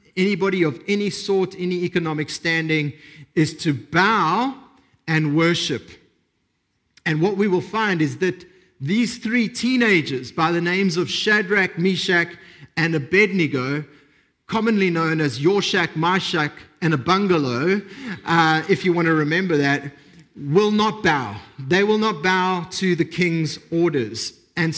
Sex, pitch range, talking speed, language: male, 150-200 Hz, 135 wpm, English